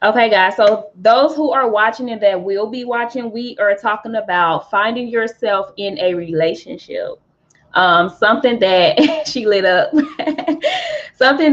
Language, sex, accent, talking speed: English, female, American, 145 wpm